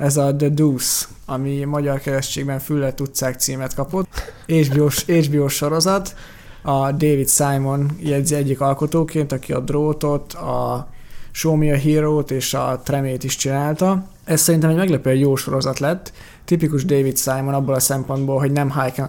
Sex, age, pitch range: male, 20-39, 135-150 Hz